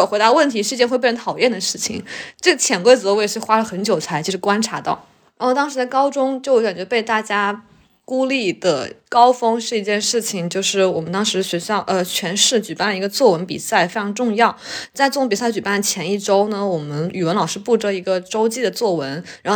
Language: Chinese